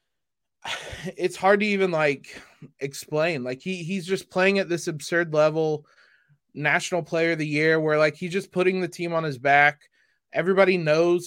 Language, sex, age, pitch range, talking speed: English, male, 20-39, 145-170 Hz, 170 wpm